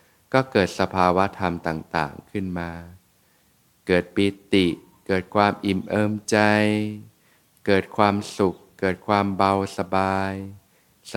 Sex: male